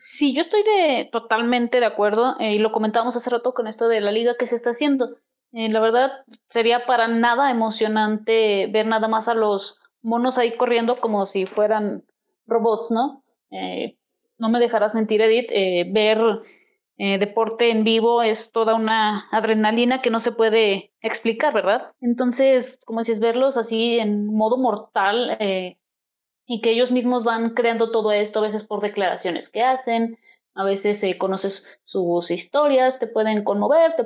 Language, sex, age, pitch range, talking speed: Spanish, female, 20-39, 210-245 Hz, 170 wpm